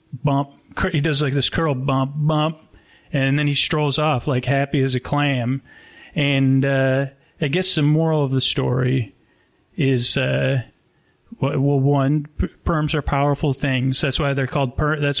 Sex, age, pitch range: male, 30-49, 130-145 Hz